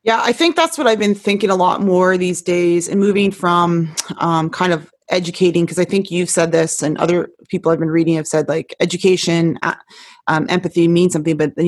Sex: female